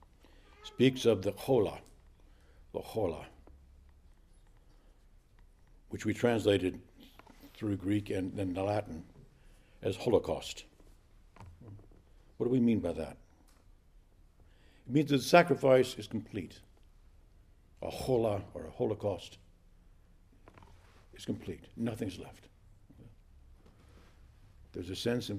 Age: 60-79